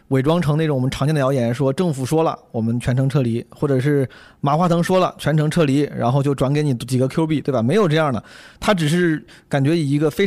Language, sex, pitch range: Chinese, male, 135-170 Hz